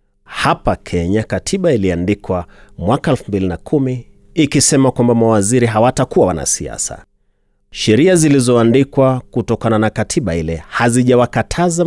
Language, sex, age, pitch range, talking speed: Swahili, male, 30-49, 100-130 Hz, 95 wpm